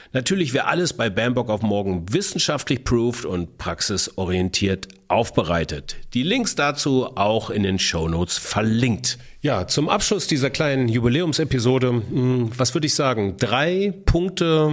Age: 40-59